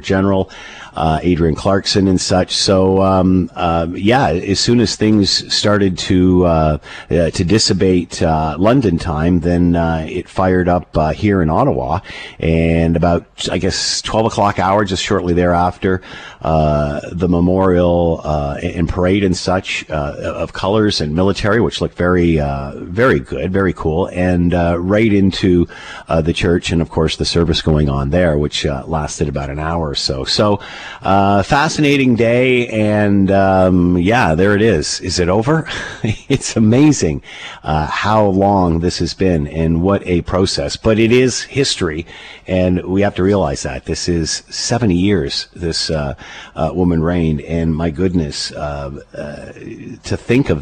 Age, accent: 50-69, American